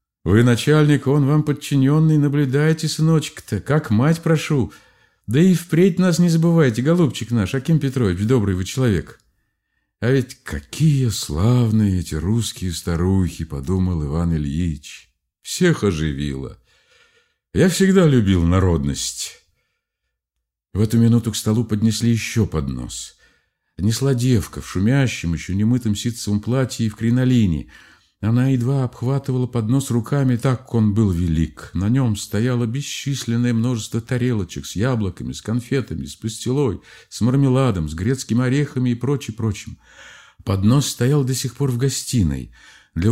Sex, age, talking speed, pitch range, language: male, 50-69, 135 wpm, 95-135 Hz, Russian